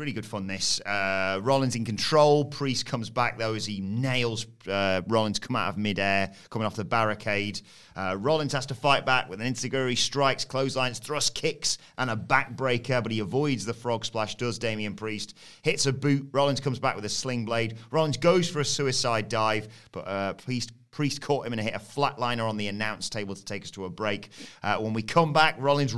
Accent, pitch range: British, 110-140 Hz